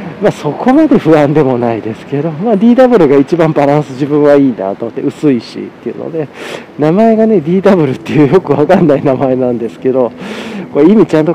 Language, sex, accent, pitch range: Japanese, male, native, 130-175 Hz